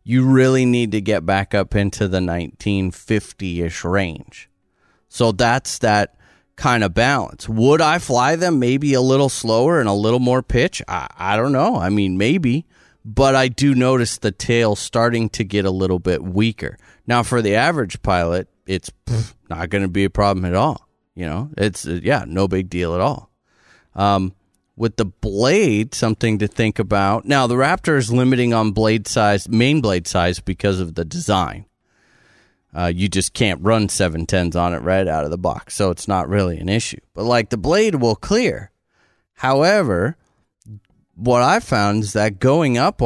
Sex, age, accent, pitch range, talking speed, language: male, 30-49, American, 95-120 Hz, 180 wpm, English